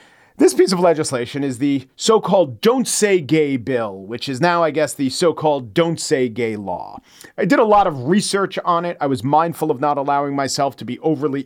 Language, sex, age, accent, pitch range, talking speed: English, male, 40-59, American, 135-165 Hz, 210 wpm